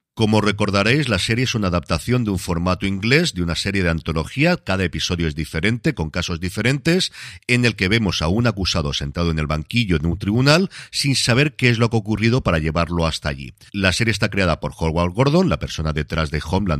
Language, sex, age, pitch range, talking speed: Spanish, male, 40-59, 85-125 Hz, 220 wpm